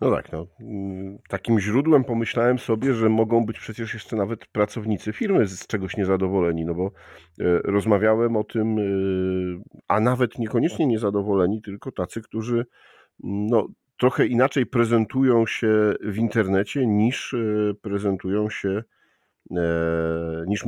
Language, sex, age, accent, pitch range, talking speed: Polish, male, 50-69, native, 90-110 Hz, 120 wpm